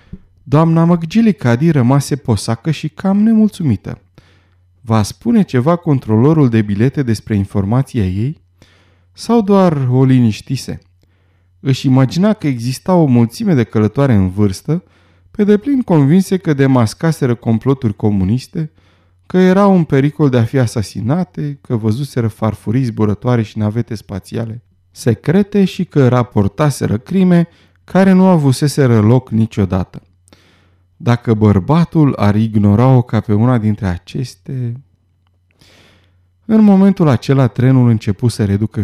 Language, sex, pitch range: Romanian, male, 105-145 Hz